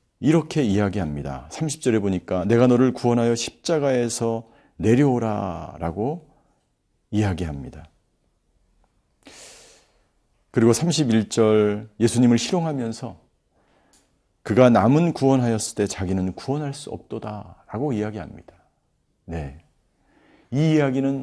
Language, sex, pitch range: Korean, male, 105-140 Hz